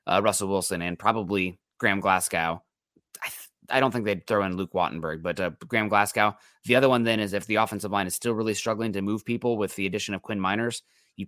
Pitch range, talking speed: 90-110 Hz, 235 wpm